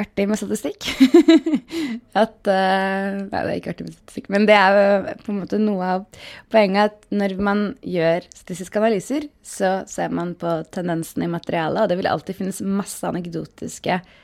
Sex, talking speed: female, 165 wpm